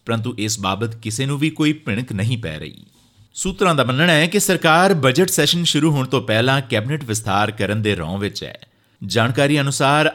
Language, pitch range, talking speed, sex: Punjabi, 105-155 Hz, 190 wpm, male